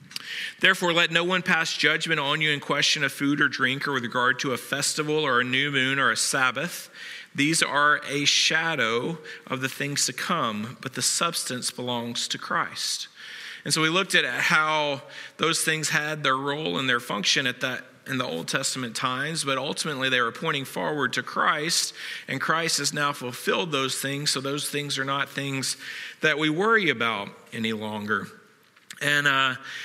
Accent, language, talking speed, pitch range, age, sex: American, English, 185 wpm, 130-155 Hz, 40-59, male